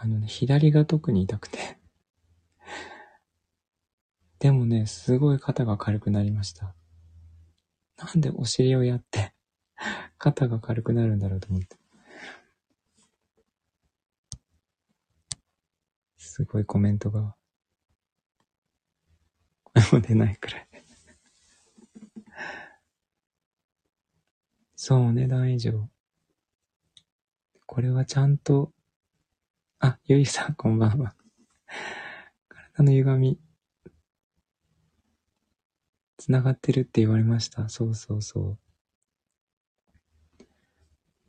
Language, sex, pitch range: Japanese, male, 85-130 Hz